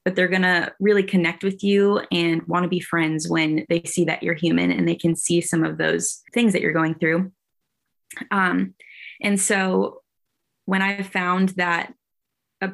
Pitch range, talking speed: 170-185 Hz, 185 wpm